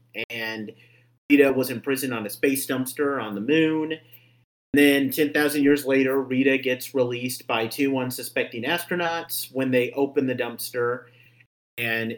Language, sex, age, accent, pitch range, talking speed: English, male, 40-59, American, 120-145 Hz, 145 wpm